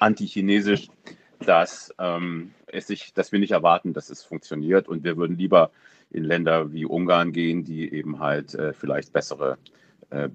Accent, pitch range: German, 80-95 Hz